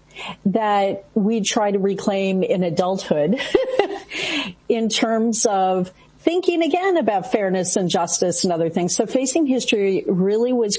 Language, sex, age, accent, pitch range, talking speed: English, female, 40-59, American, 185-245 Hz, 135 wpm